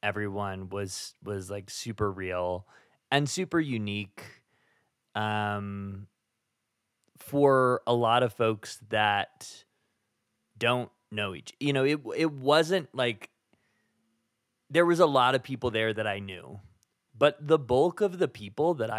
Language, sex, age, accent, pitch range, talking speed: English, male, 20-39, American, 105-125 Hz, 135 wpm